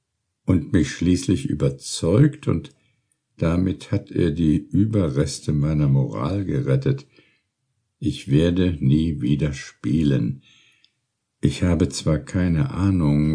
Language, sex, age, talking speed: German, male, 60-79, 105 wpm